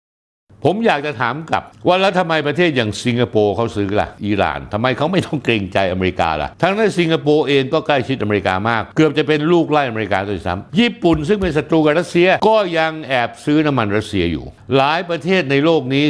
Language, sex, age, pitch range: Thai, male, 60-79, 110-165 Hz